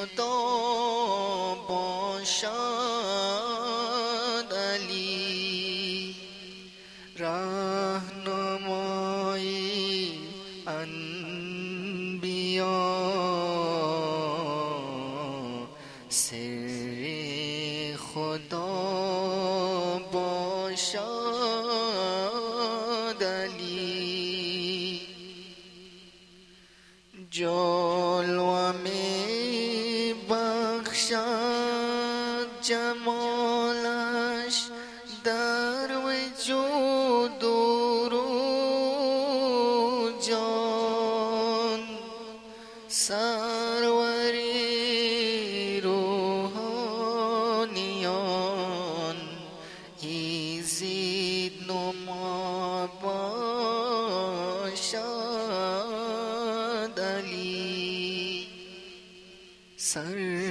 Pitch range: 180-230 Hz